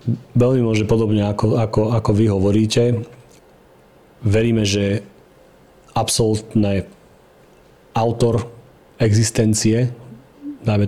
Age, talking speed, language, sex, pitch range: 40-59, 75 wpm, Slovak, male, 100-115 Hz